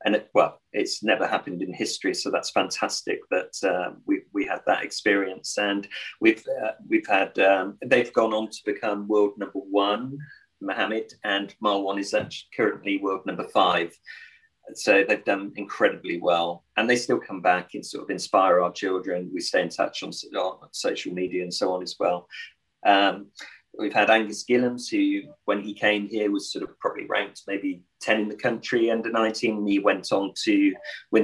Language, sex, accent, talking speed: English, male, British, 185 wpm